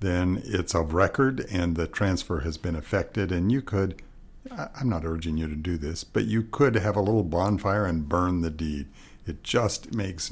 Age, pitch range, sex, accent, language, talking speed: 60-79, 85-105 Hz, male, American, English, 200 wpm